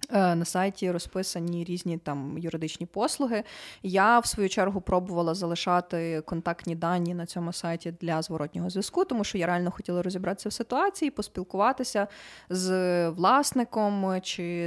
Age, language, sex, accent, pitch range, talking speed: 20-39, Ukrainian, female, native, 180-225 Hz, 135 wpm